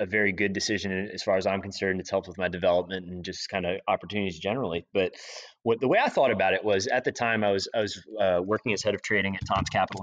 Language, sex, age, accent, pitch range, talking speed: English, male, 30-49, American, 100-120 Hz, 270 wpm